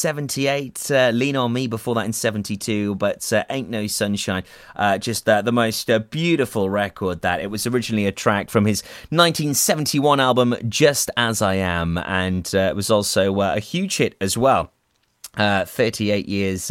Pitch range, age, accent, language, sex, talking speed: 110-150 Hz, 30-49, British, English, male, 180 wpm